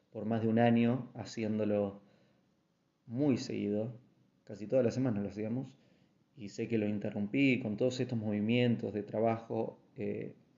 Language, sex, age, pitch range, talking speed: Spanish, male, 20-39, 110-130 Hz, 145 wpm